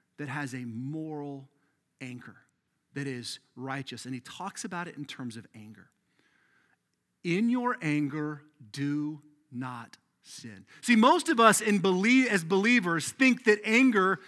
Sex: male